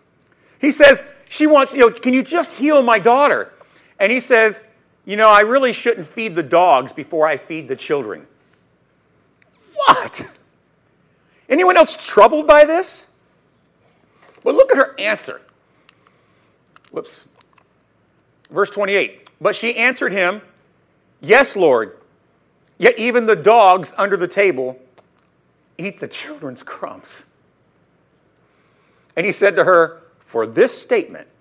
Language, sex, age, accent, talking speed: English, male, 50-69, American, 130 wpm